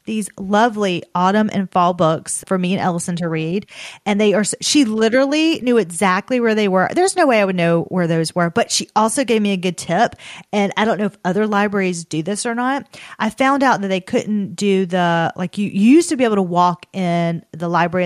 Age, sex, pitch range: 30-49, female, 180-215 Hz